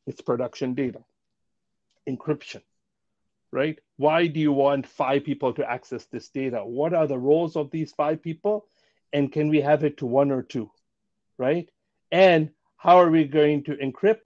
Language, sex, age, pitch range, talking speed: English, male, 50-69, 135-170 Hz, 170 wpm